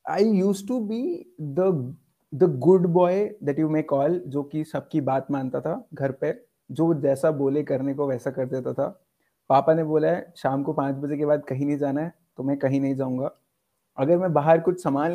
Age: 30-49